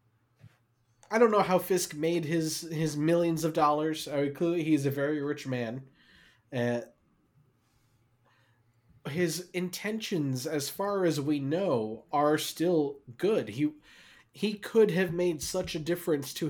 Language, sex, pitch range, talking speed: English, male, 120-155 Hz, 140 wpm